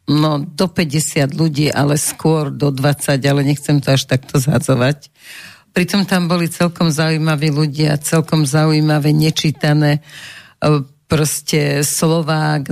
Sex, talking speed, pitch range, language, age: female, 120 wpm, 145-170 Hz, Slovak, 50-69